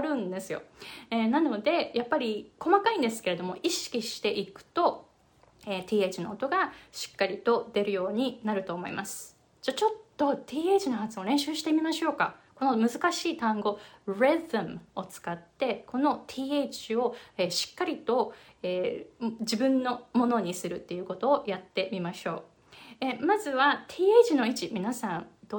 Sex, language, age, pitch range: female, Japanese, 20-39, 195-295 Hz